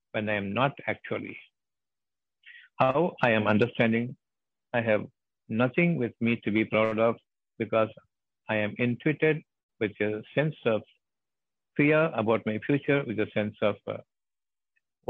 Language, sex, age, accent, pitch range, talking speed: Tamil, male, 60-79, native, 110-135 Hz, 140 wpm